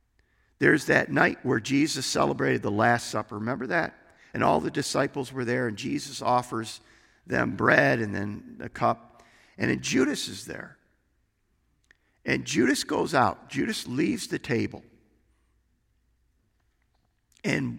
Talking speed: 135 wpm